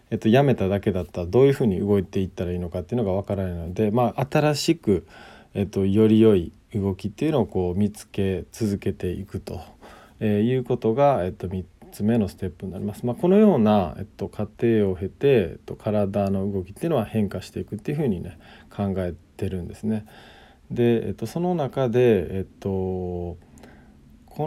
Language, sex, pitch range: Japanese, male, 95-130 Hz